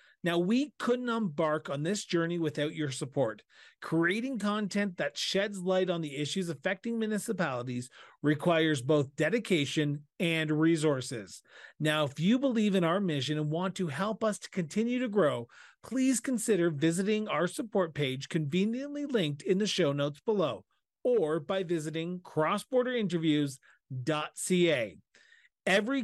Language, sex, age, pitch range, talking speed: English, male, 40-59, 160-215 Hz, 135 wpm